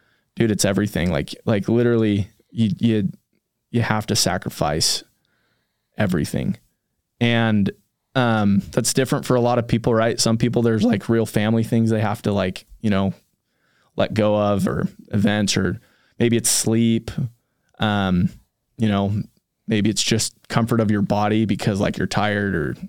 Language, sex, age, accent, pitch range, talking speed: English, male, 20-39, American, 105-120 Hz, 155 wpm